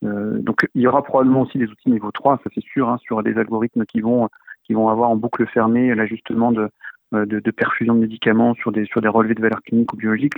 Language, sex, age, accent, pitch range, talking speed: French, male, 40-59, French, 110-135 Hz, 245 wpm